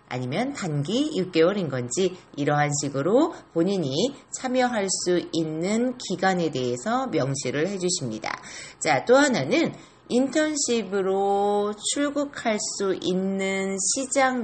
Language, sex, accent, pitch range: Korean, female, native, 150-225 Hz